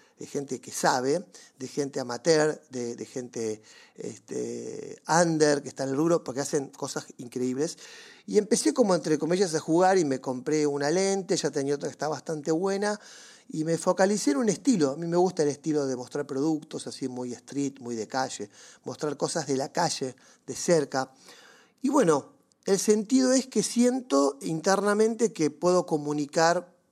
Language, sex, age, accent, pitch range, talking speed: Spanish, male, 40-59, Argentinian, 140-185 Hz, 175 wpm